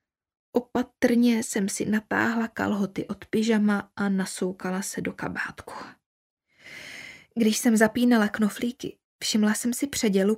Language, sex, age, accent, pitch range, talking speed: Czech, female, 20-39, native, 195-230 Hz, 115 wpm